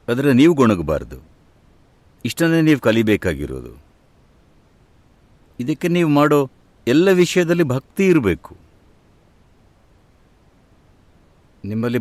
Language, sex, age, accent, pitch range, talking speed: English, male, 60-79, Indian, 105-155 Hz, 100 wpm